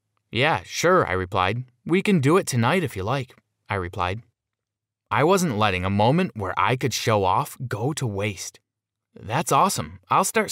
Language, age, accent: English, 20-39, American